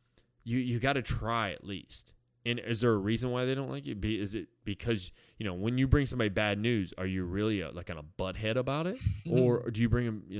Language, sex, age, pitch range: English, male, 20-39, 100-125 Hz